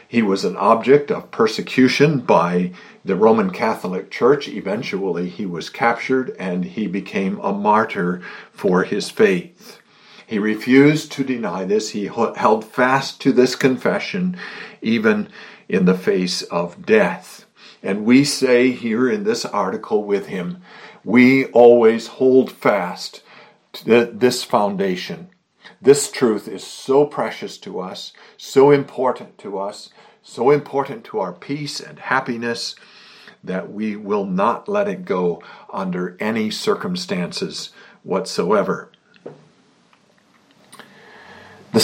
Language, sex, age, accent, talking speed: English, male, 50-69, American, 125 wpm